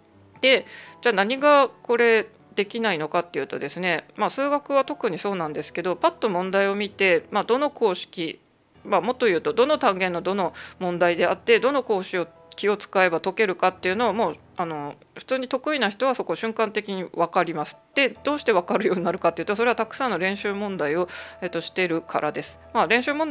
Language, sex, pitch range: Japanese, female, 175-235 Hz